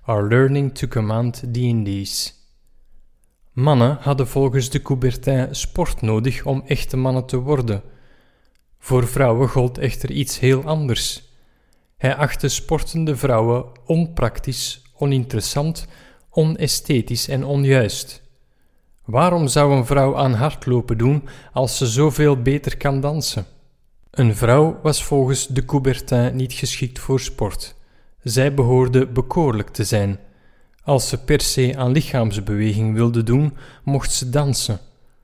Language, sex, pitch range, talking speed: Dutch, male, 120-140 Hz, 125 wpm